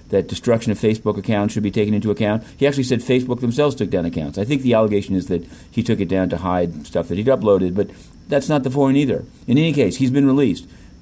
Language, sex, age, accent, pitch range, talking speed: English, male, 50-69, American, 105-130 Hz, 250 wpm